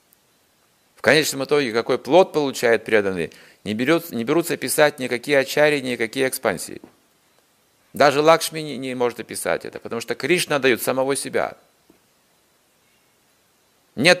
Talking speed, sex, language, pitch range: 125 wpm, male, Russian, 130-150 Hz